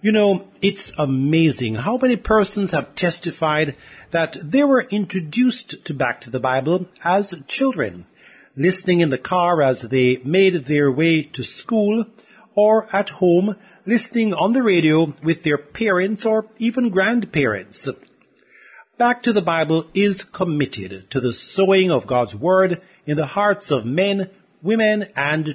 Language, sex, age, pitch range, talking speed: English, male, 50-69, 145-205 Hz, 150 wpm